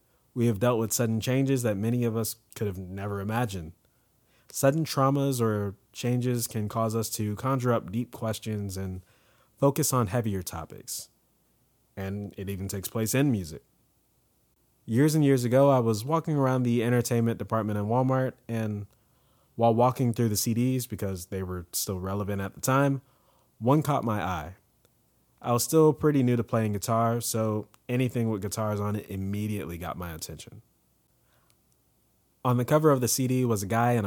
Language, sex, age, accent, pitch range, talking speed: English, male, 20-39, American, 100-125 Hz, 170 wpm